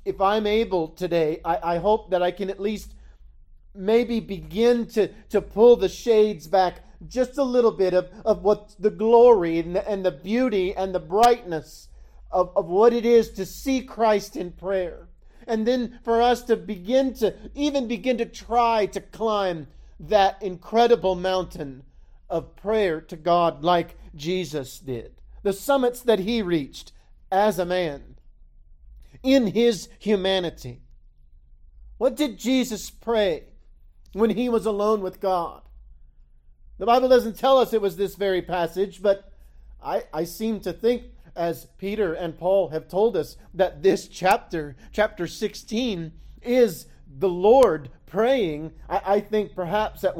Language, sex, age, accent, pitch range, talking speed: English, male, 50-69, American, 155-215 Hz, 155 wpm